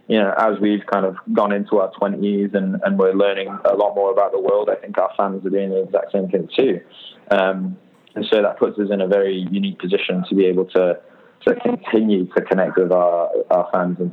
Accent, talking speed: British, 235 wpm